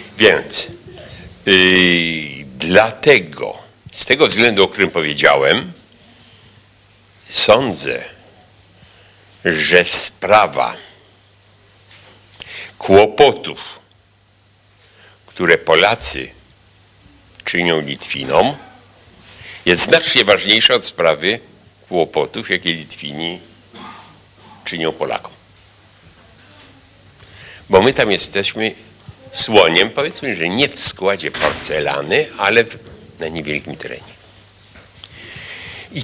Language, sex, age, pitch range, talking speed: Polish, male, 60-79, 95-105 Hz, 70 wpm